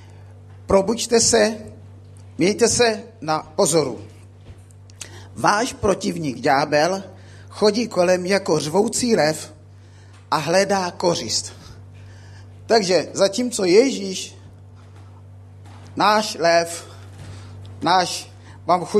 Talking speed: 75 wpm